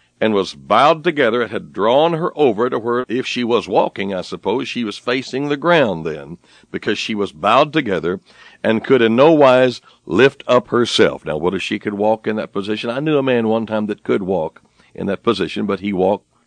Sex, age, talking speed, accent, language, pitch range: male, 60-79, 220 wpm, American, English, 100-150 Hz